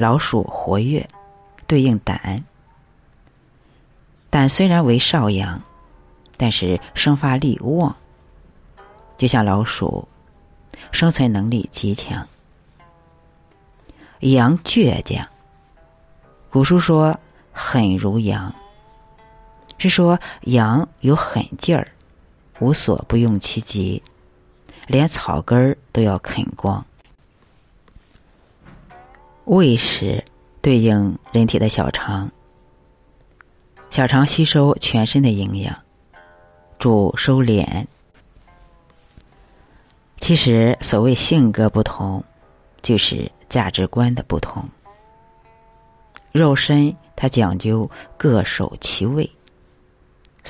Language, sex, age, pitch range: Chinese, female, 50-69, 85-130 Hz